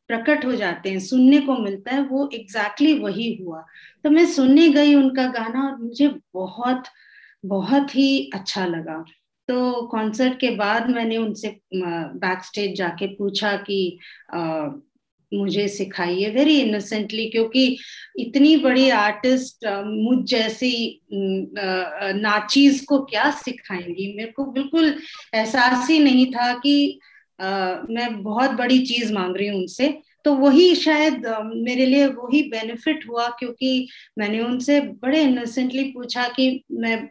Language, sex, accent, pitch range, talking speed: Hindi, female, native, 200-260 Hz, 130 wpm